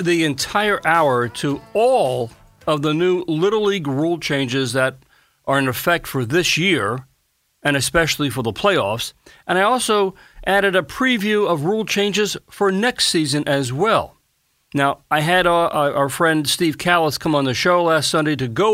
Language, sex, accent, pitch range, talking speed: English, male, American, 135-185 Hz, 170 wpm